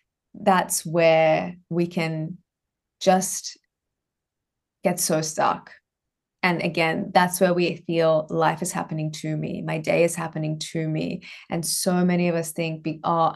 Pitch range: 160-180 Hz